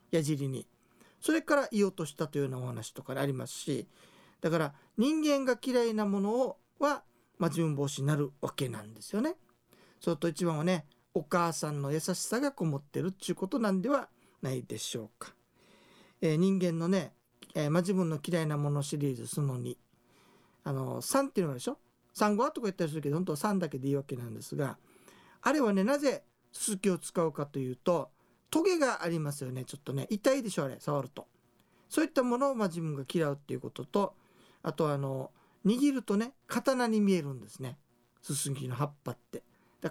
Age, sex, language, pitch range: 40-59, male, Japanese, 145-215 Hz